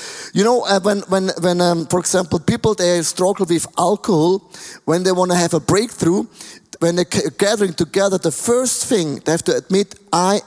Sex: male